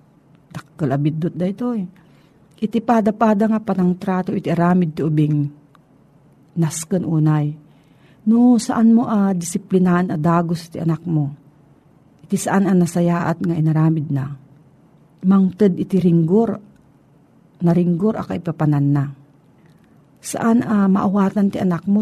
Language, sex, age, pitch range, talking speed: Filipino, female, 50-69, 155-205 Hz, 130 wpm